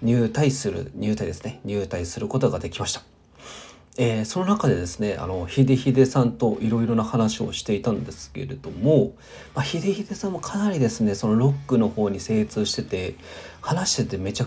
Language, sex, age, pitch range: Japanese, male, 40-59, 100-135 Hz